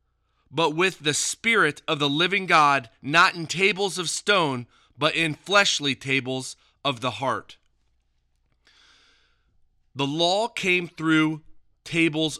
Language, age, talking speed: English, 30-49, 120 wpm